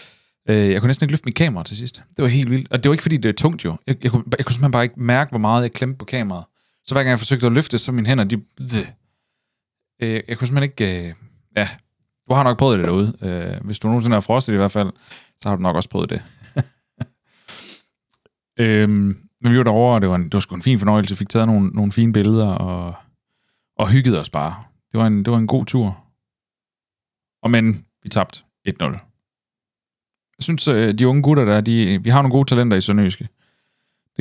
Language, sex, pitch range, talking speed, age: Danish, male, 100-125 Hz, 225 wpm, 30-49